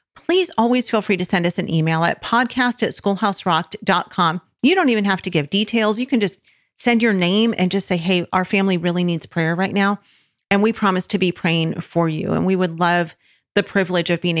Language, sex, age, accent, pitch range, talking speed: English, female, 40-59, American, 180-220 Hz, 220 wpm